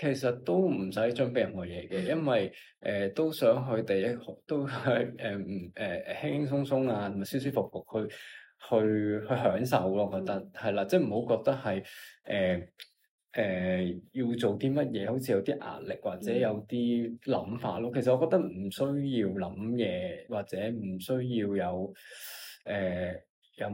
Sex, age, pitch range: male, 20-39, 95-125 Hz